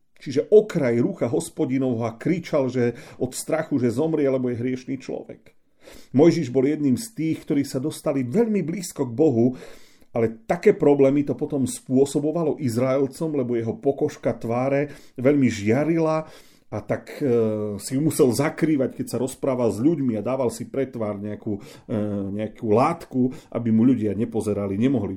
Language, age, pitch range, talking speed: Slovak, 40-59, 120-155 Hz, 150 wpm